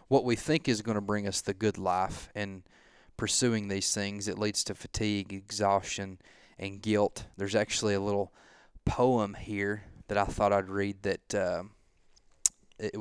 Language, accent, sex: English, American, male